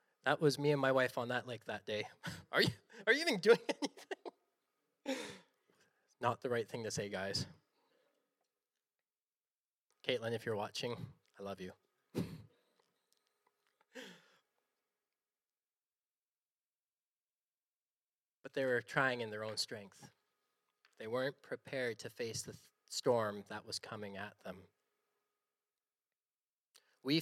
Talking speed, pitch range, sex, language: 115 wpm, 135-195 Hz, male, English